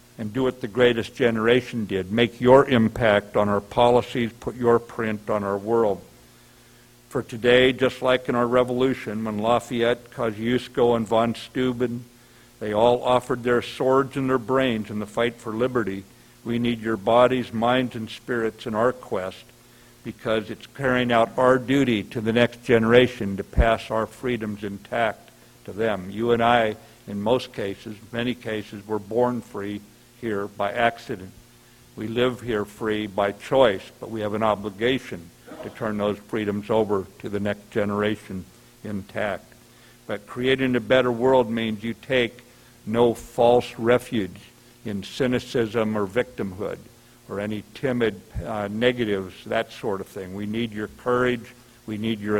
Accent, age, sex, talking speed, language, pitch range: American, 60-79, male, 160 wpm, English, 105-125 Hz